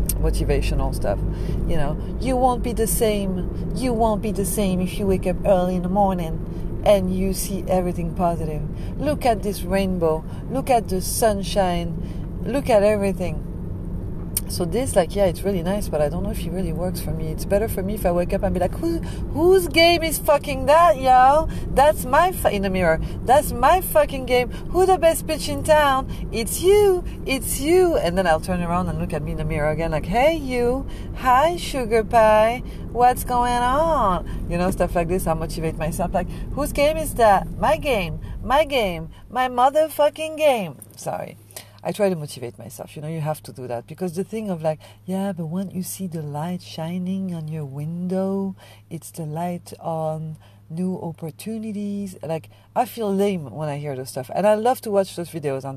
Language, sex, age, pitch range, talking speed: English, female, 40-59, 160-220 Hz, 200 wpm